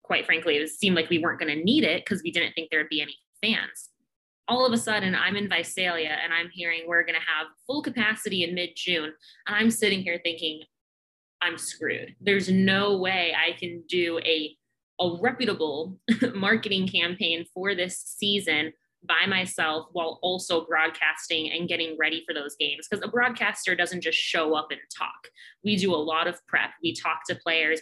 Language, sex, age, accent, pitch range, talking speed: English, female, 20-39, American, 155-190 Hz, 195 wpm